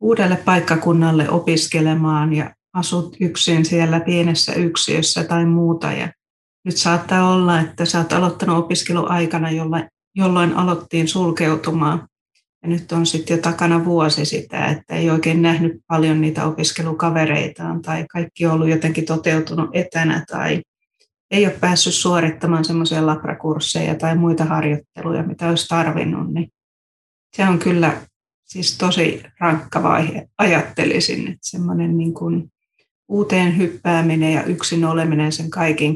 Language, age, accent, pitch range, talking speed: Finnish, 30-49, native, 160-175 Hz, 125 wpm